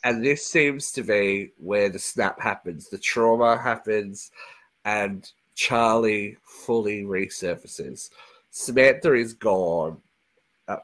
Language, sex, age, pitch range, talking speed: English, male, 30-49, 110-160 Hz, 110 wpm